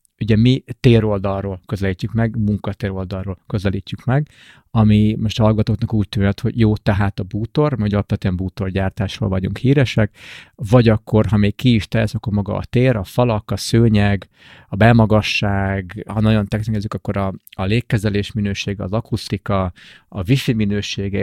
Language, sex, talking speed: Hungarian, male, 155 wpm